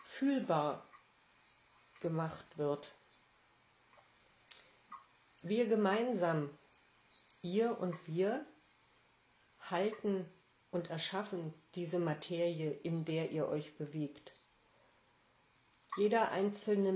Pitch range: 170-205 Hz